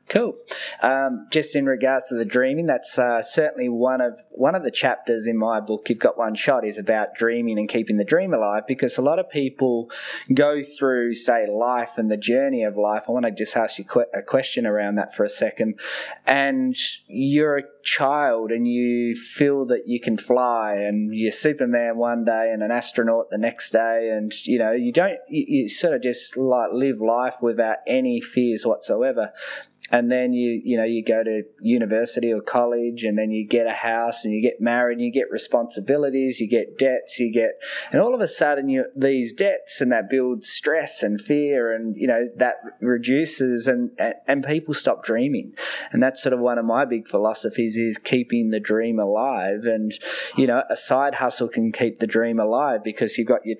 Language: English